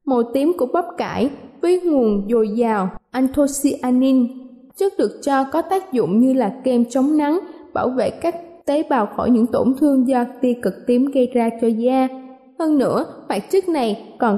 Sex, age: female, 20-39